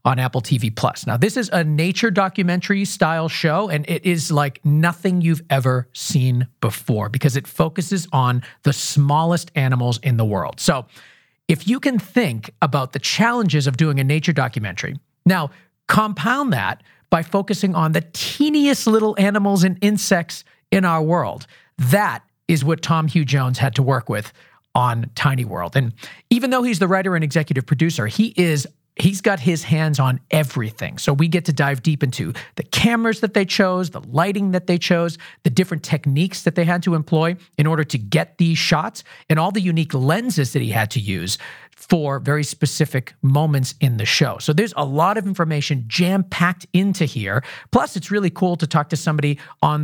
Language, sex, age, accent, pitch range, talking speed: English, male, 40-59, American, 130-180 Hz, 185 wpm